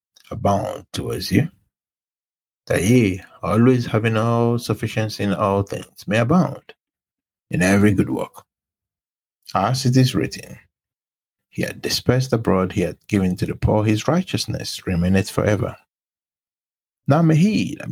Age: 60-79